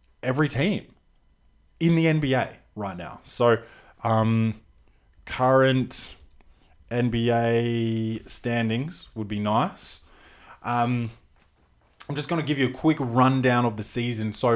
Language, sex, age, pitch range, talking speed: English, male, 20-39, 110-135 Hz, 120 wpm